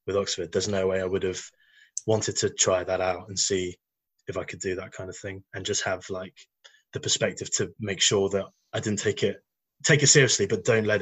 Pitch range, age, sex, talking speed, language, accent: 95-115 Hz, 20-39, male, 235 wpm, English, British